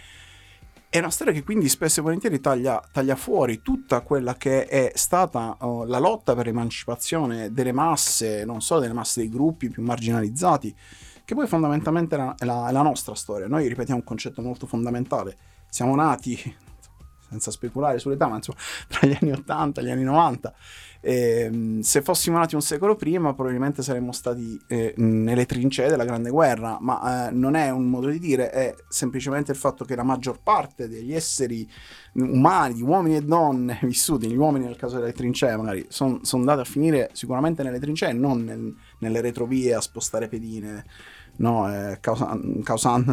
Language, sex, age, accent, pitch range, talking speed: Italian, male, 30-49, native, 115-140 Hz, 175 wpm